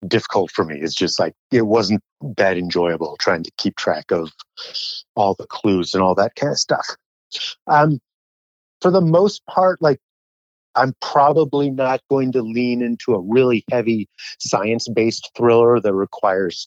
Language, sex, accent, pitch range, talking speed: English, male, American, 95-125 Hz, 160 wpm